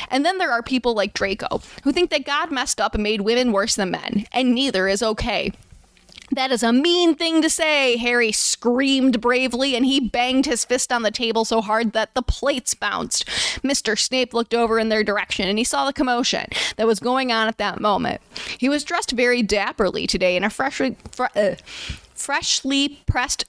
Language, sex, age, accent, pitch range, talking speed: English, female, 20-39, American, 210-265 Hz, 195 wpm